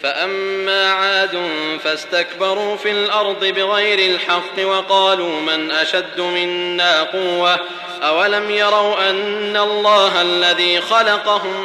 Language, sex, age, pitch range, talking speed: Gujarati, male, 30-49, 175-205 Hz, 95 wpm